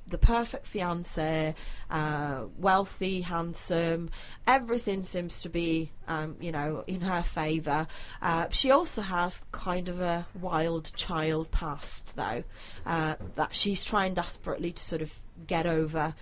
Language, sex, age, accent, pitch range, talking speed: English, female, 30-49, British, 155-185 Hz, 135 wpm